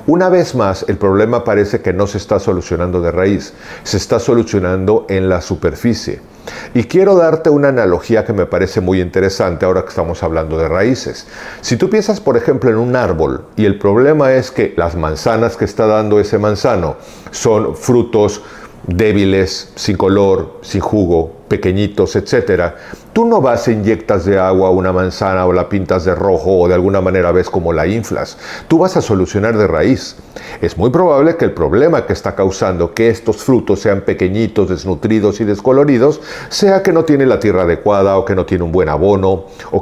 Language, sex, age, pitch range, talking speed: Spanish, male, 50-69, 95-135 Hz, 185 wpm